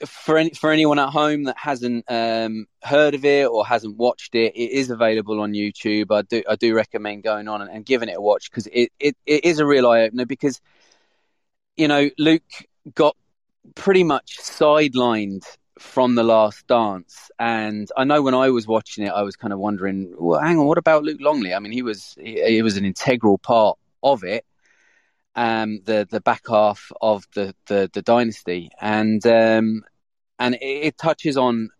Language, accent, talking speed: English, British, 195 wpm